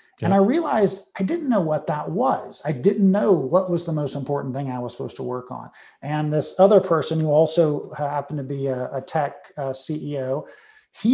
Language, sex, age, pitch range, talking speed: English, male, 40-59, 145-185 Hz, 210 wpm